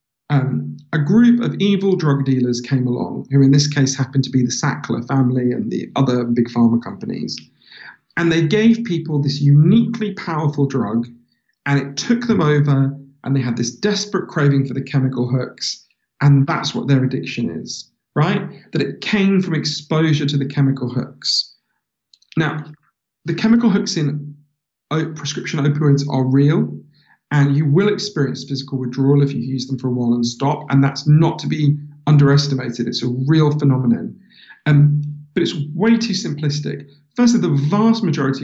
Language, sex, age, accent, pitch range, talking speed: English, male, 40-59, British, 135-160 Hz, 170 wpm